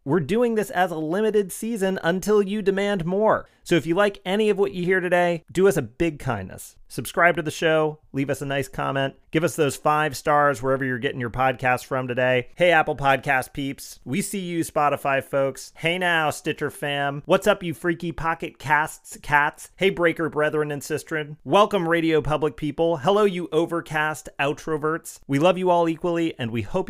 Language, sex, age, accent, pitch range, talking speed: English, male, 30-49, American, 130-175 Hz, 195 wpm